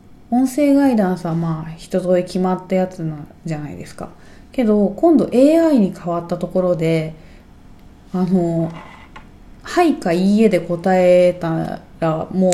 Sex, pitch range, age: female, 165-215 Hz, 20-39